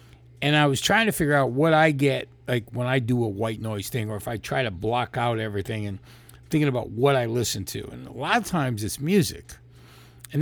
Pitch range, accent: 115-150 Hz, American